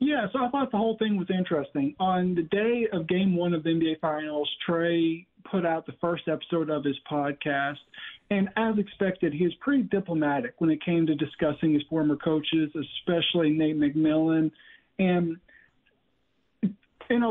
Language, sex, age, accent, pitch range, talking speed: English, male, 40-59, American, 150-185 Hz, 165 wpm